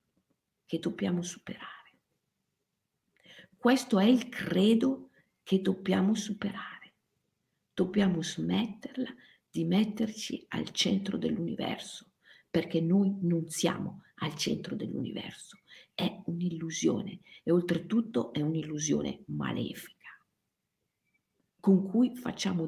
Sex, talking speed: female, 90 wpm